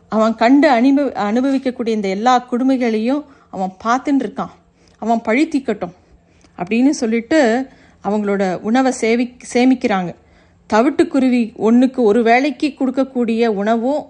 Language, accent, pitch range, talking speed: Tamil, native, 215-265 Hz, 105 wpm